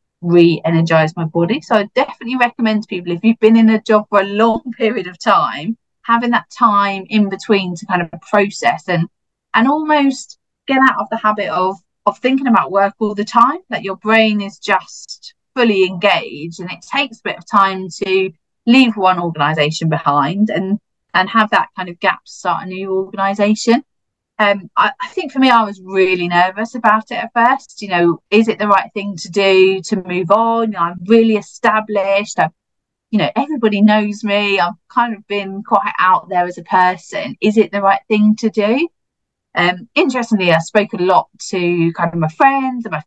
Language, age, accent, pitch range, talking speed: English, 30-49, British, 180-225 Hz, 200 wpm